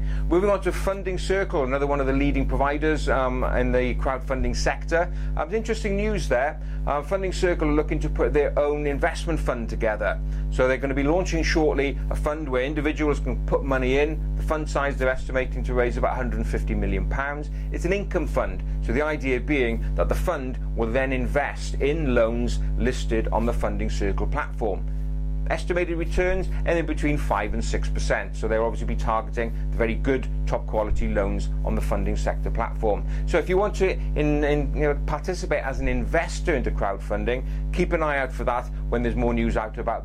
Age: 40-59